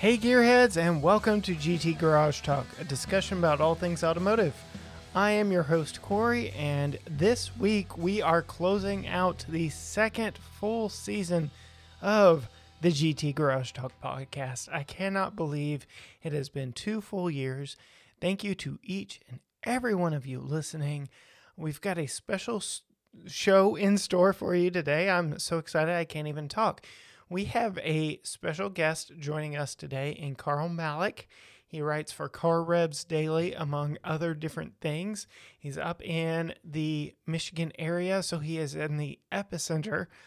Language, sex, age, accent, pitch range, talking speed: English, male, 30-49, American, 150-195 Hz, 155 wpm